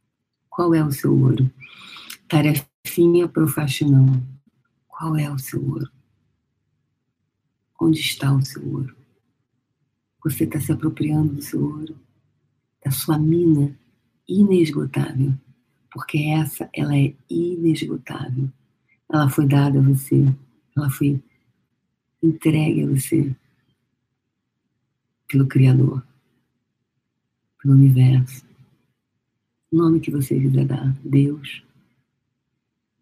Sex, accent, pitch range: female, Brazilian, 130-155 Hz